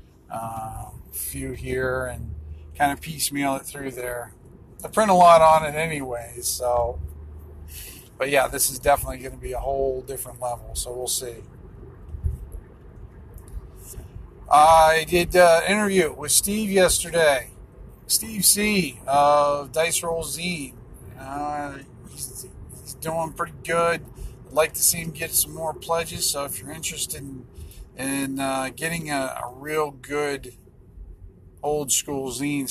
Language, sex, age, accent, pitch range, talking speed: English, male, 40-59, American, 110-150 Hz, 140 wpm